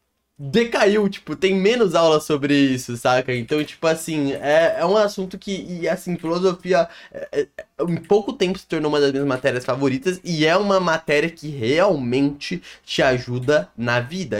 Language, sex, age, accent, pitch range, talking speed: Portuguese, male, 20-39, Brazilian, 120-155 Hz, 170 wpm